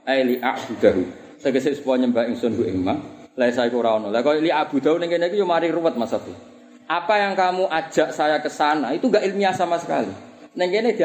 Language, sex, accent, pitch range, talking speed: Indonesian, male, native, 150-205 Hz, 200 wpm